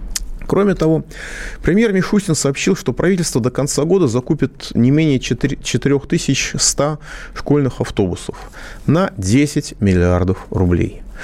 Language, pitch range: Russian, 105-150 Hz